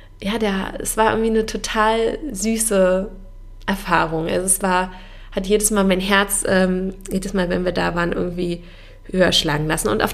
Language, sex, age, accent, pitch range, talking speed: German, female, 20-39, German, 170-220 Hz, 180 wpm